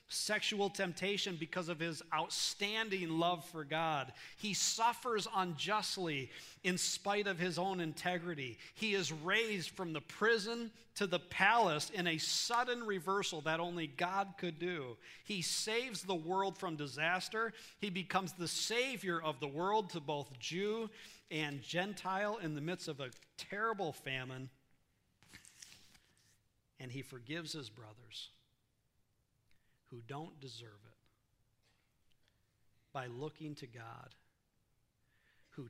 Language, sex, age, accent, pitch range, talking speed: English, male, 40-59, American, 115-185 Hz, 125 wpm